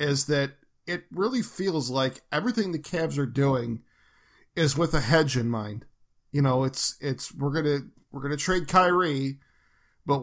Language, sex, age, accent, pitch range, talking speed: English, male, 40-59, American, 130-155 Hz, 175 wpm